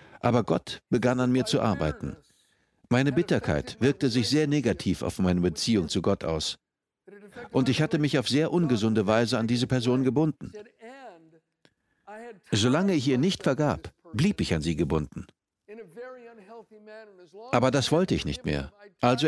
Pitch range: 110-175 Hz